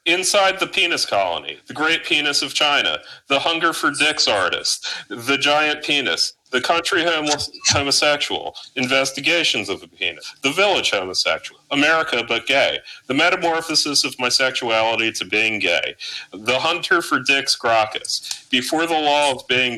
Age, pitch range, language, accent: 40-59, 125-155 Hz, English, American